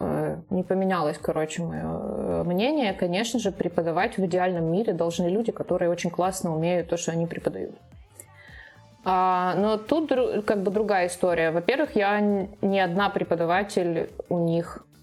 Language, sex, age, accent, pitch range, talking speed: Ukrainian, female, 20-39, native, 170-210 Hz, 135 wpm